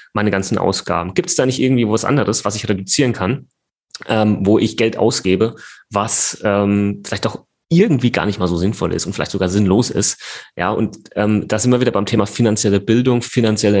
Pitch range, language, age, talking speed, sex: 105-120 Hz, German, 30-49, 205 wpm, male